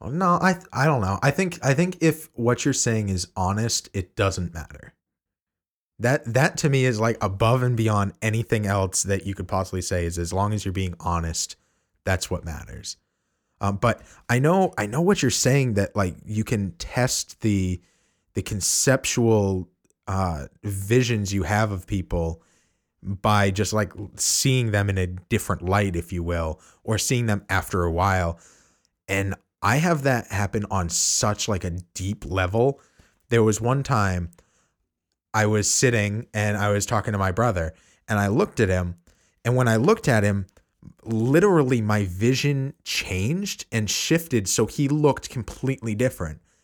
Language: English